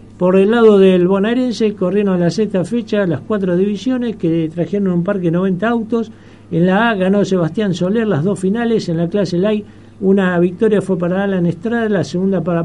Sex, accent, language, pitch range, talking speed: male, Argentinian, Spanish, 165-210 Hz, 200 wpm